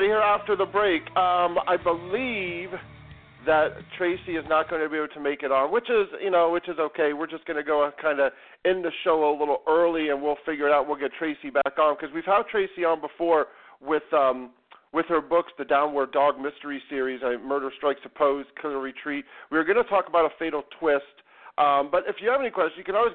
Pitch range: 135-175 Hz